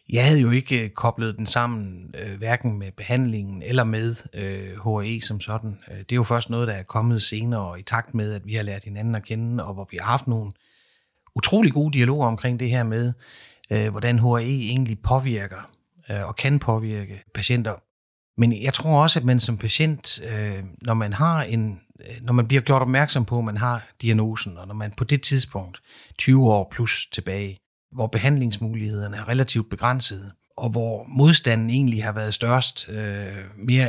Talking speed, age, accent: 170 wpm, 30-49, native